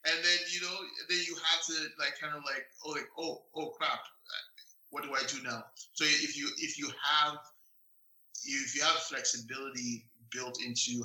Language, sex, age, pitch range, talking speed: English, male, 20-39, 115-135 Hz, 185 wpm